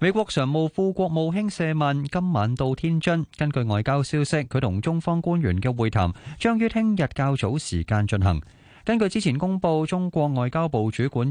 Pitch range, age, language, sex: 110-165 Hz, 20-39, Chinese, male